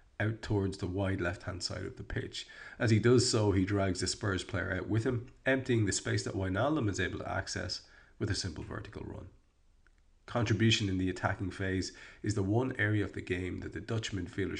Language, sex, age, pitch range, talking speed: English, male, 30-49, 95-110 Hz, 210 wpm